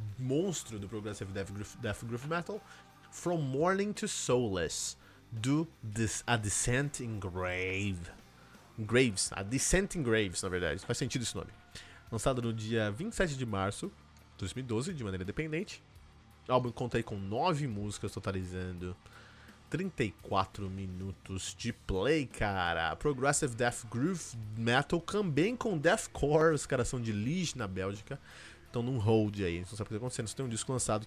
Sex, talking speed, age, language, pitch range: male, 155 wpm, 20-39, Portuguese, 100-135 Hz